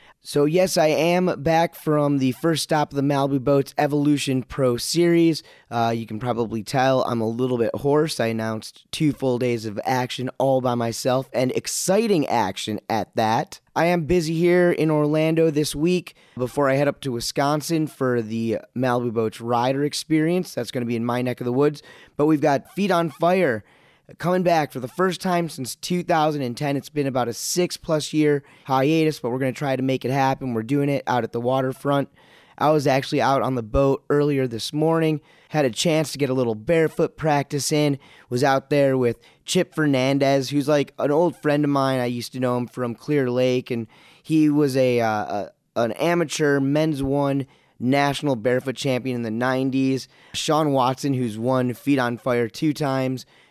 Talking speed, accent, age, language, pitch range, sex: 195 wpm, American, 20-39, English, 125-155 Hz, male